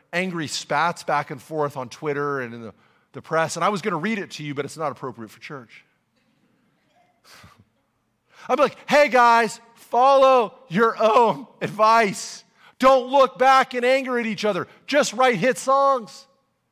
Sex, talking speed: male, 170 wpm